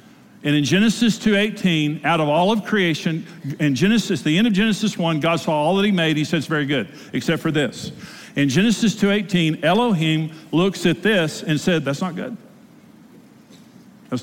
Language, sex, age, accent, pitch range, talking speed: English, male, 50-69, American, 155-205 Hz, 190 wpm